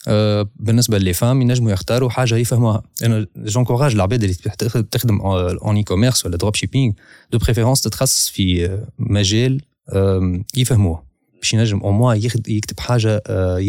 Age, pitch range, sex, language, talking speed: 20-39, 100-125 Hz, male, Arabic, 130 wpm